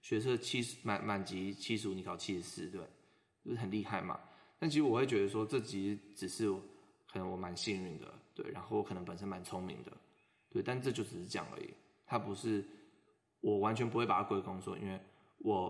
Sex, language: male, Chinese